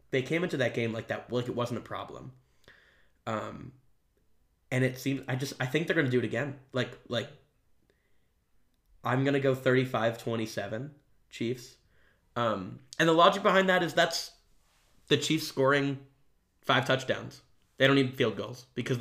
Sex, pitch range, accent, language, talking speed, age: male, 115-135 Hz, American, English, 160 wpm, 10-29